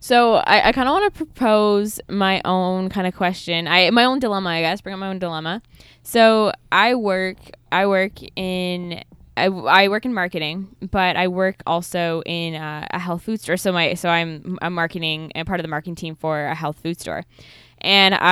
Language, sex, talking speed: English, female, 205 wpm